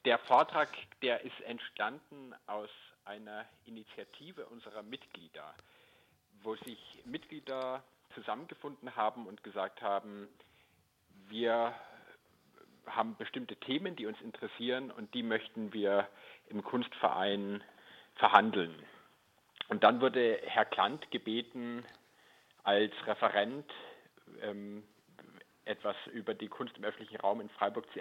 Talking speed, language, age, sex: 110 wpm, German, 50-69, male